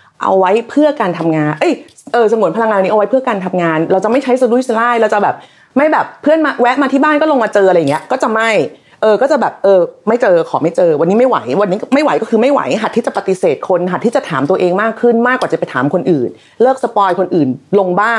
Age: 30-49